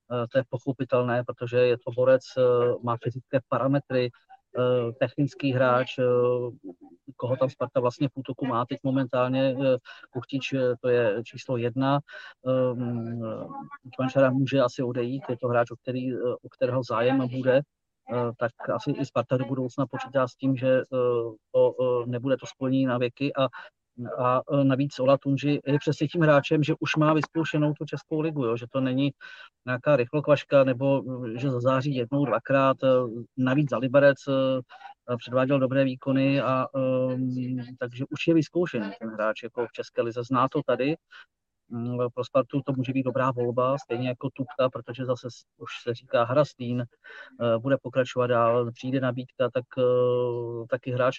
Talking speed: 145 wpm